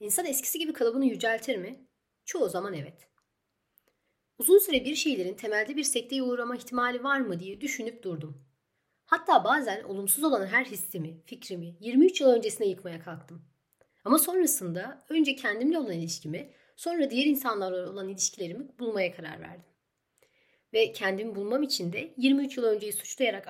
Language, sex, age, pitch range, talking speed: English, female, 40-59, 185-265 Hz, 150 wpm